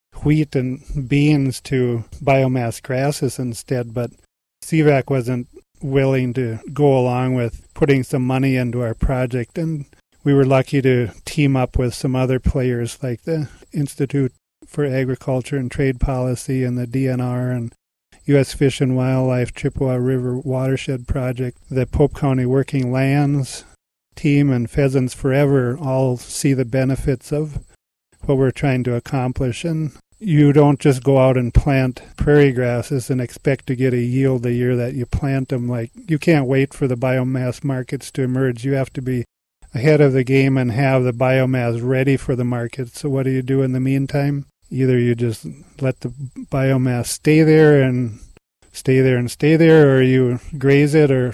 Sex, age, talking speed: male, 40-59, 170 wpm